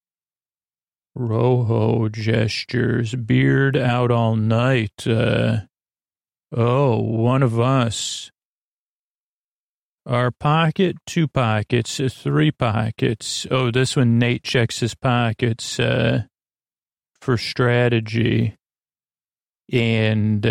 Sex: male